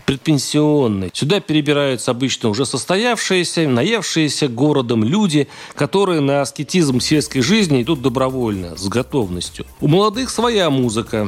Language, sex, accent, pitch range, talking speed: Russian, male, native, 125-180 Hz, 115 wpm